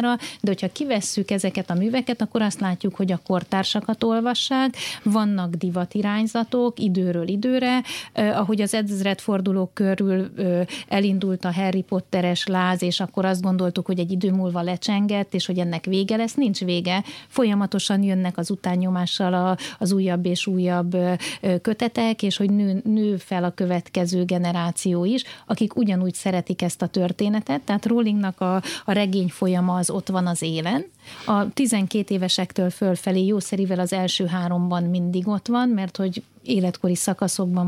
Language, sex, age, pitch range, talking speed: Hungarian, female, 30-49, 180-210 Hz, 150 wpm